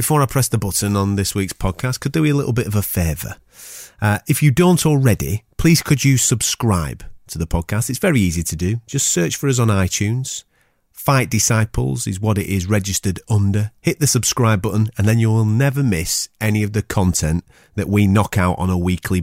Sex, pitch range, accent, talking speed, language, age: male, 90-120 Hz, British, 210 wpm, English, 30-49